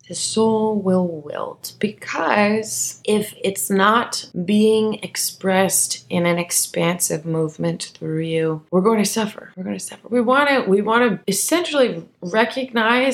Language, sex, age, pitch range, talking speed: English, female, 20-39, 175-205 Hz, 130 wpm